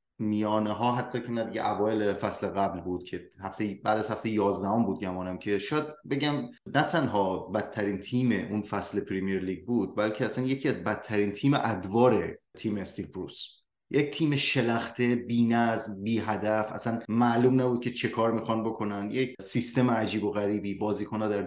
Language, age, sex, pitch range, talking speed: Persian, 30-49, male, 100-125 Hz, 170 wpm